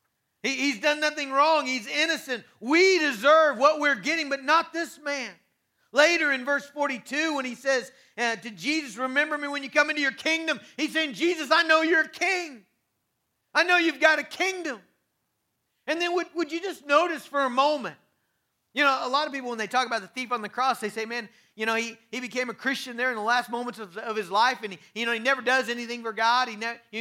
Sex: male